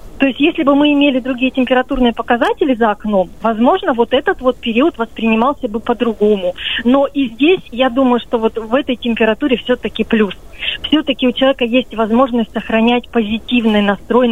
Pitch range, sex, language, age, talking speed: 220-260 Hz, female, Russian, 30-49, 165 wpm